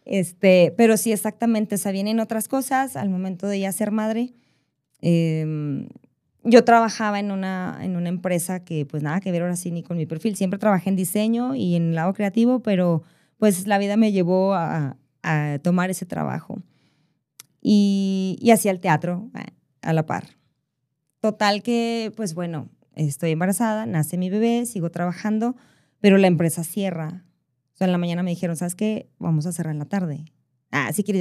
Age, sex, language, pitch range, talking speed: 20-39, female, Spanish, 170-215 Hz, 180 wpm